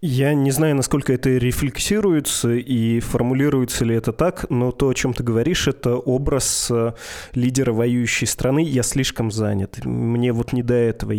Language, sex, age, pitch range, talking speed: Russian, male, 20-39, 115-135 Hz, 160 wpm